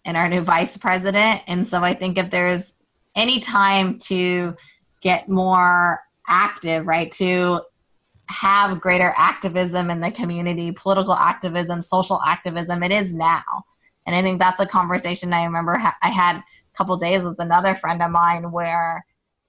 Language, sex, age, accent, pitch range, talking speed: English, female, 20-39, American, 170-195 Hz, 155 wpm